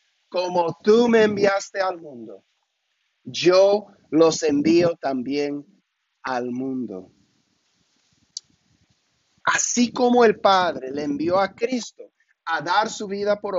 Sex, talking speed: male, 110 wpm